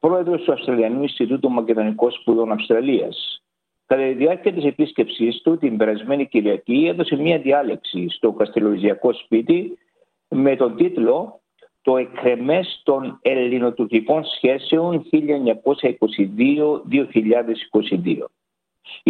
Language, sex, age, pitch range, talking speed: Greek, male, 60-79, 115-160 Hz, 95 wpm